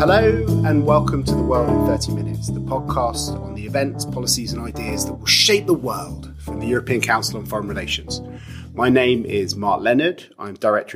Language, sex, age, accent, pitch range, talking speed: English, male, 30-49, British, 105-125 Hz, 195 wpm